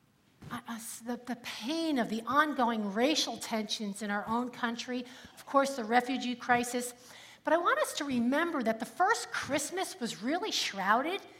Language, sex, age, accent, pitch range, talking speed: English, female, 40-59, American, 215-290 Hz, 165 wpm